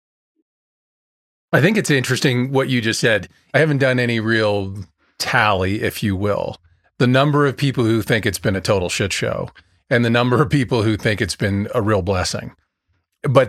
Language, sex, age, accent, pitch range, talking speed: English, male, 40-59, American, 100-130 Hz, 185 wpm